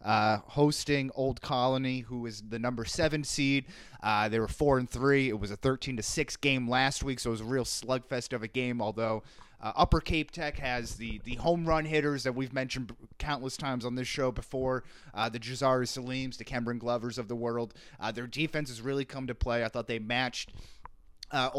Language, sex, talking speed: English, male, 215 wpm